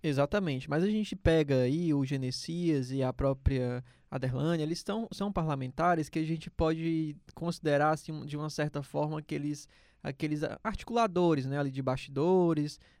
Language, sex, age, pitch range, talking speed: Portuguese, male, 20-39, 140-170 Hz, 140 wpm